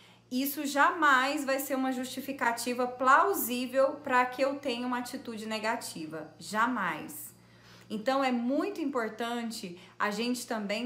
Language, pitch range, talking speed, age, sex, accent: Portuguese, 220-270 Hz, 120 wpm, 30-49, female, Brazilian